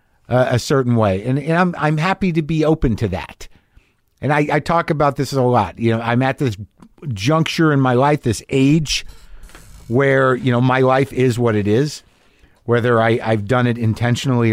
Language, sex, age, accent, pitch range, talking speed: English, male, 50-69, American, 125-175 Hz, 200 wpm